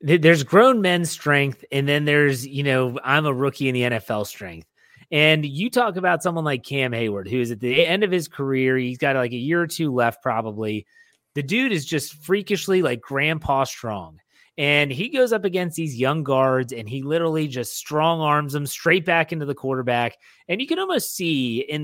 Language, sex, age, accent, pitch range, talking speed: English, male, 30-49, American, 125-165 Hz, 205 wpm